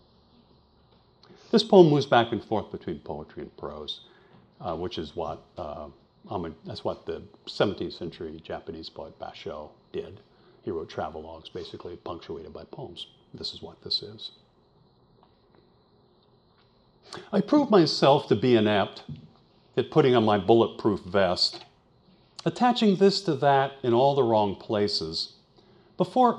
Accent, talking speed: American, 135 wpm